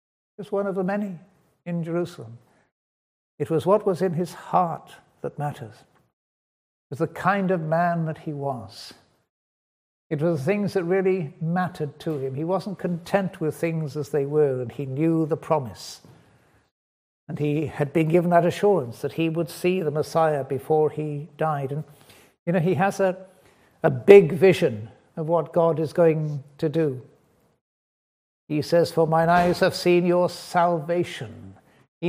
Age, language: 60-79, English